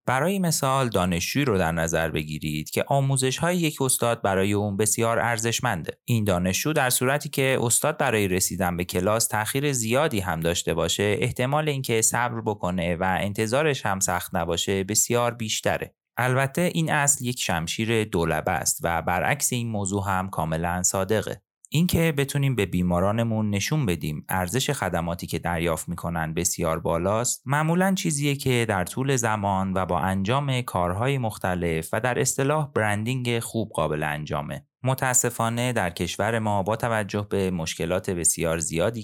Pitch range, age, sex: 90-125 Hz, 30-49, male